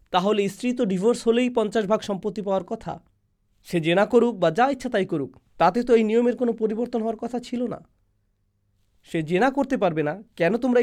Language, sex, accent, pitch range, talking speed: Bengali, male, native, 155-240 Hz, 195 wpm